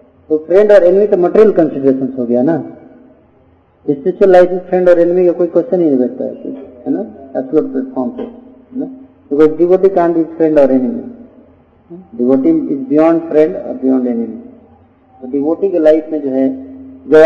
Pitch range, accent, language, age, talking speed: 130-180 Hz, native, Hindi, 50-69, 50 wpm